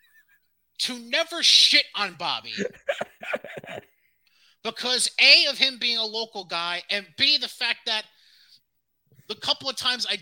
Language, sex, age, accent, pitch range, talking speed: English, male, 30-49, American, 185-265 Hz, 135 wpm